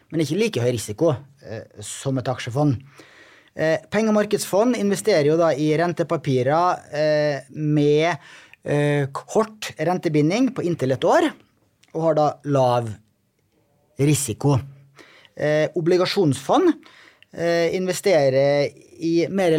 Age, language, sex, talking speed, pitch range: 30-49, English, male, 100 wpm, 135-170 Hz